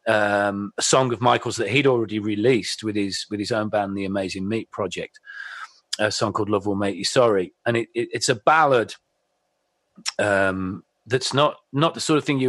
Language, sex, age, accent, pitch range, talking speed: English, male, 40-59, British, 105-135 Hz, 200 wpm